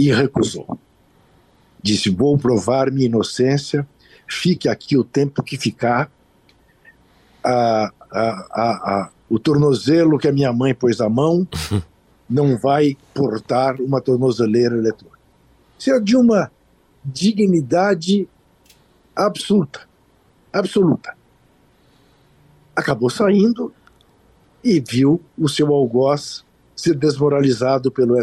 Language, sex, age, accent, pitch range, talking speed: Portuguese, male, 60-79, Brazilian, 125-195 Hz, 105 wpm